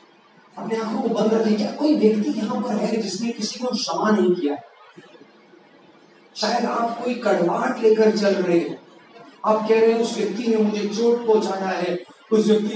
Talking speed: 175 wpm